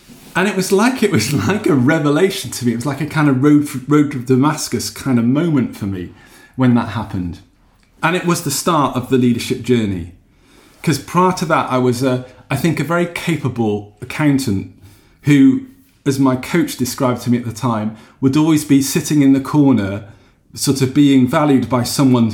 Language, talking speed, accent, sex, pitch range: English, 200 wpm, British, male, 110-135 Hz